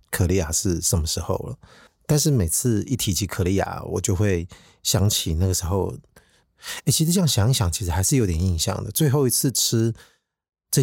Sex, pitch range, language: male, 90-115 Hz, Chinese